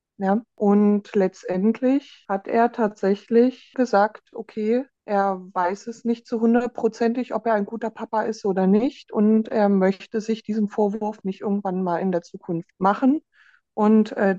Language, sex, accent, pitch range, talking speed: German, female, German, 195-225 Hz, 155 wpm